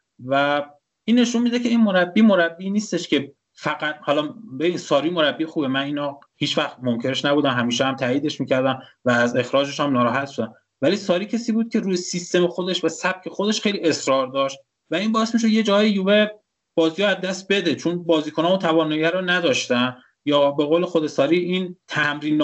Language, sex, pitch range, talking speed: Persian, male, 145-190 Hz, 195 wpm